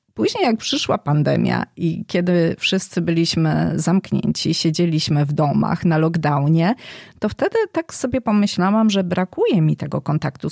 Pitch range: 165-220 Hz